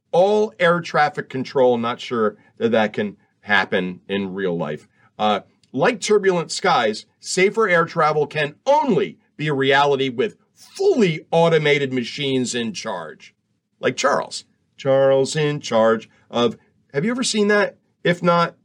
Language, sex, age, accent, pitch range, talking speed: English, male, 50-69, American, 140-210 Hz, 140 wpm